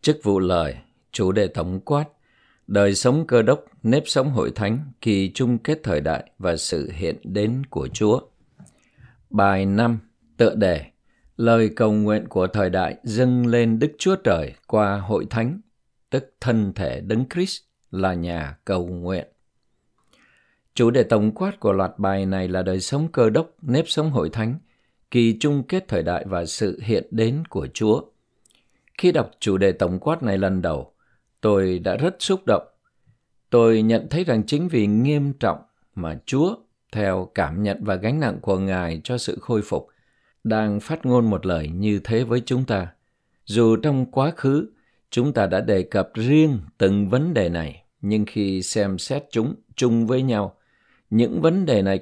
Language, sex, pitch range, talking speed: Vietnamese, male, 95-130 Hz, 175 wpm